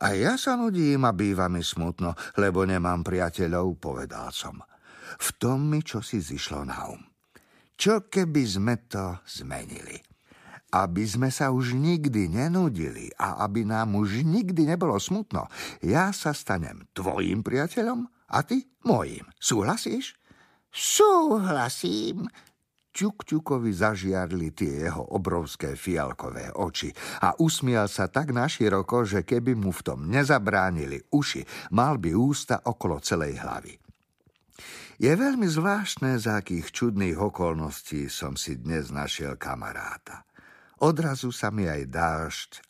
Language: Slovak